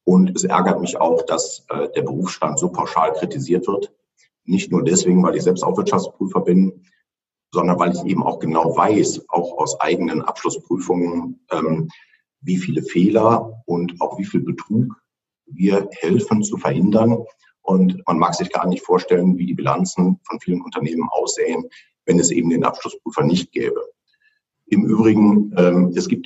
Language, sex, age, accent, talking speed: German, male, 60-79, German, 160 wpm